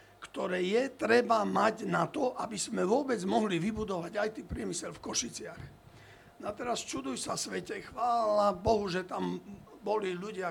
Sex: male